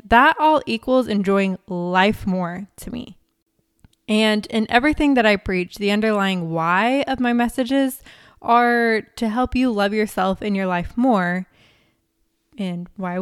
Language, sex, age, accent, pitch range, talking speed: English, female, 20-39, American, 180-230 Hz, 145 wpm